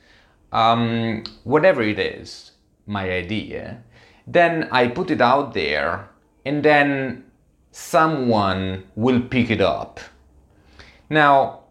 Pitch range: 95-120 Hz